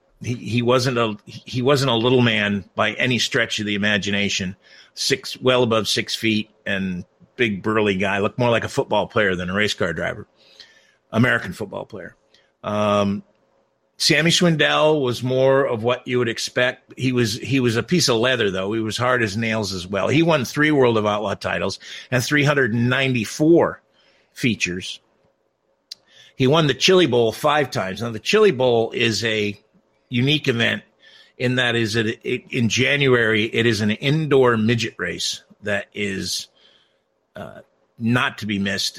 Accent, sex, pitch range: American, male, 105-130 Hz